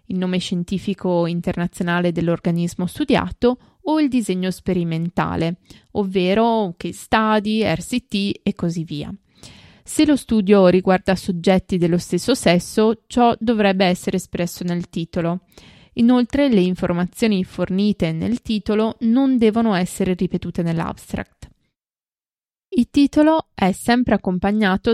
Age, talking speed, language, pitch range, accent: 20-39, 115 wpm, Italian, 175-230 Hz, native